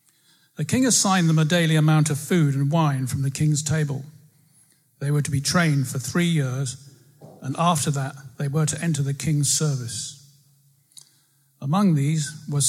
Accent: British